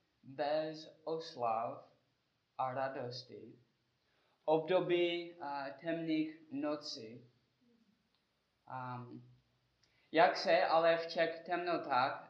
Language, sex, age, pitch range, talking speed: Czech, male, 20-39, 135-155 Hz, 75 wpm